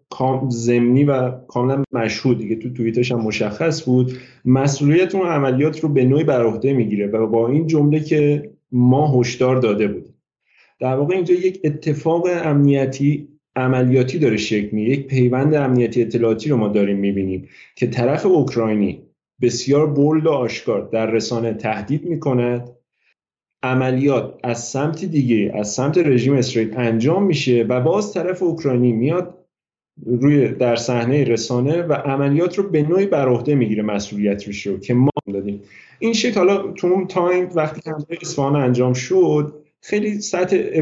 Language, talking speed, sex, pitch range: Persian, 145 wpm, male, 120-150 Hz